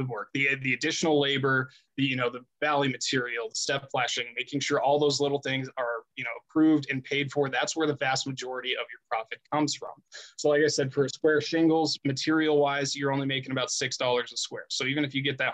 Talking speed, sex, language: 230 wpm, male, English